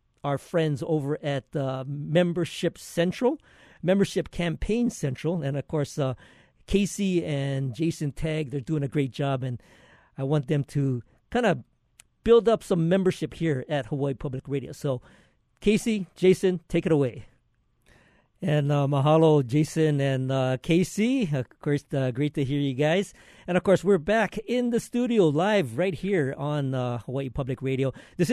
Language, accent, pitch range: English, American, 135-175 Hz